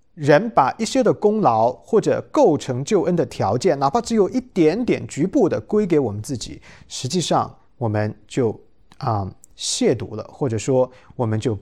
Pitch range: 120-185 Hz